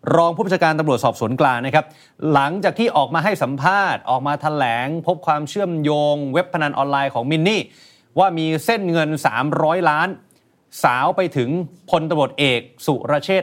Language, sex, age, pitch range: Thai, male, 30-49, 140-185 Hz